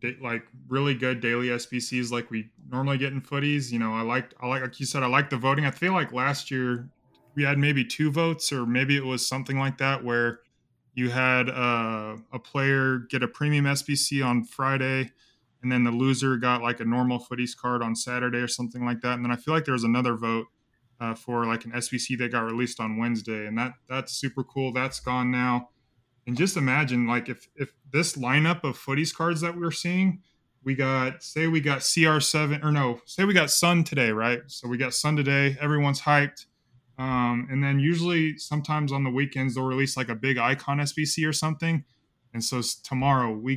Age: 20-39